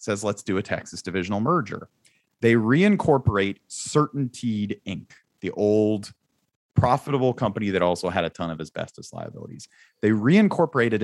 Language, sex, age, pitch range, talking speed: English, male, 30-49, 95-125 Hz, 135 wpm